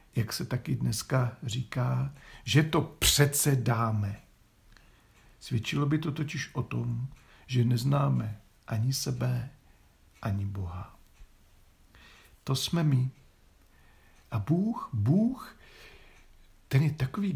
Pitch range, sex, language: 105-145 Hz, male, Czech